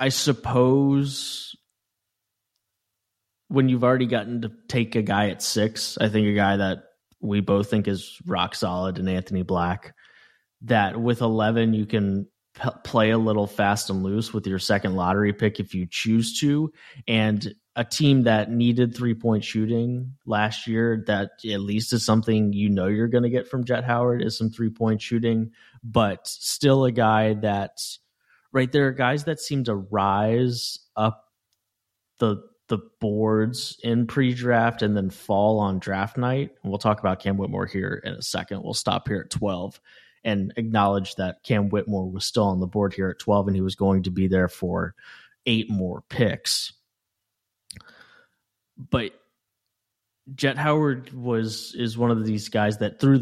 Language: English